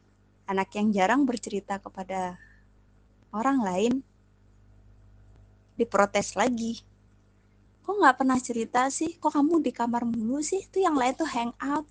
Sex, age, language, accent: female, 20-39, Indonesian, native